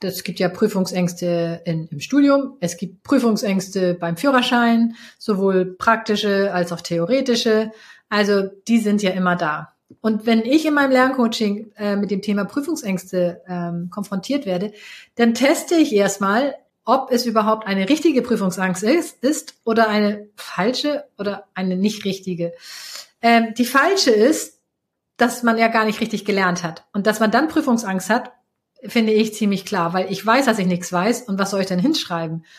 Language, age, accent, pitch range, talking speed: German, 30-49, German, 195-235 Hz, 170 wpm